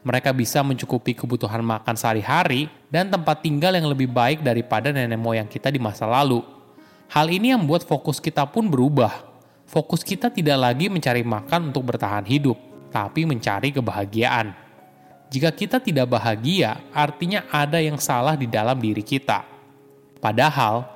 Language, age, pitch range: Indonesian, 20-39, 115-155 Hz